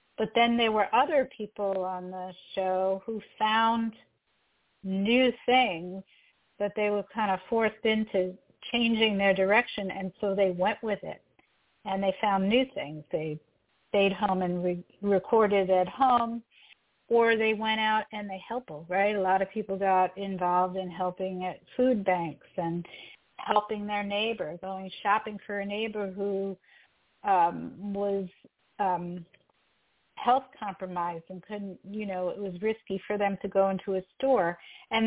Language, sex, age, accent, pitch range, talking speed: English, female, 50-69, American, 190-220 Hz, 155 wpm